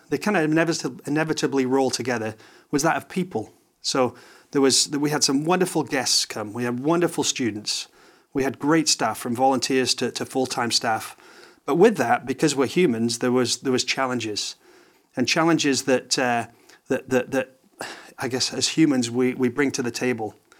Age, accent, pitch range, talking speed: 30-49, British, 125-150 Hz, 185 wpm